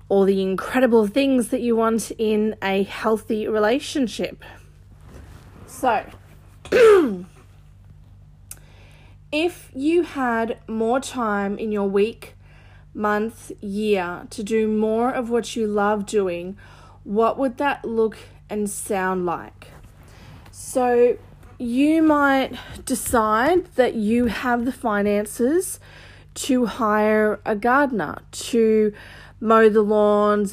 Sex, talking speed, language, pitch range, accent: female, 105 wpm, English, 185-240 Hz, Australian